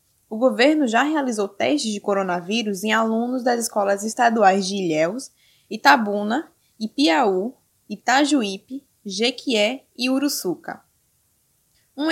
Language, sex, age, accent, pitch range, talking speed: Portuguese, female, 10-29, Brazilian, 210-280 Hz, 105 wpm